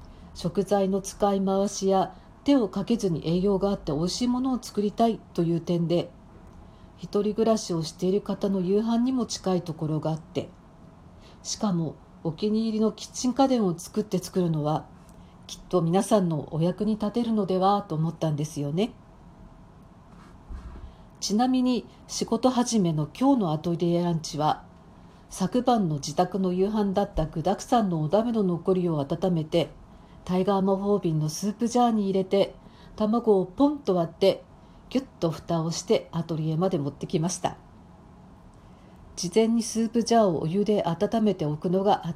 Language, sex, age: Japanese, female, 50-69